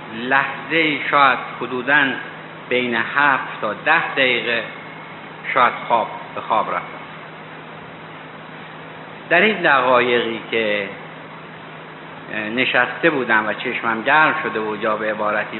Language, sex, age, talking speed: Persian, male, 60-79, 105 wpm